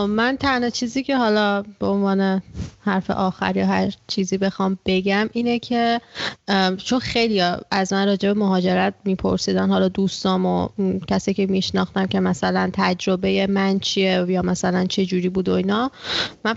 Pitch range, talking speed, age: 185-220 Hz, 150 wpm, 30-49